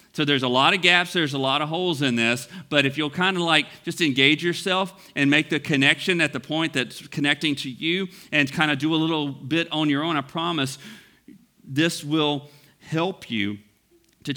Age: 40-59